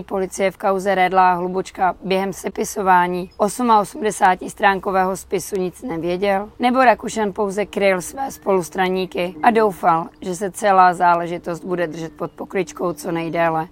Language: Czech